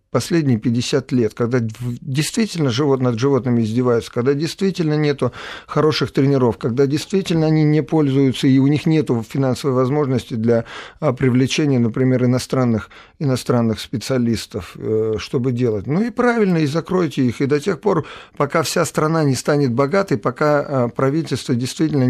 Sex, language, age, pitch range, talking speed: male, Russian, 50-69, 115-145 Hz, 140 wpm